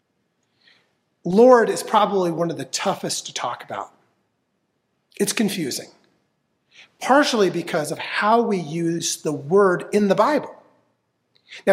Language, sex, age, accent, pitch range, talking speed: English, male, 40-59, American, 165-225 Hz, 125 wpm